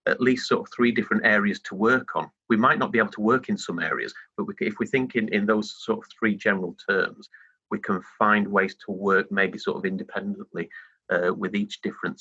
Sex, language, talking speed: male, English, 225 wpm